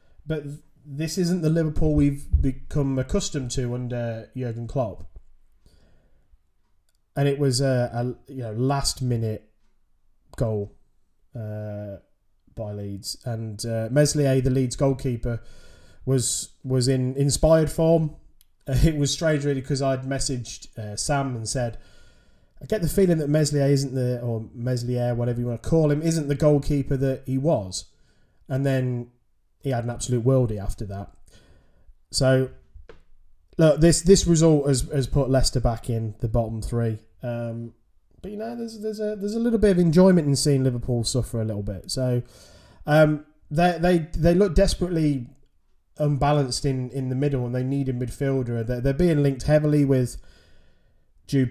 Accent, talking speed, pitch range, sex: British, 160 wpm, 110-145 Hz, male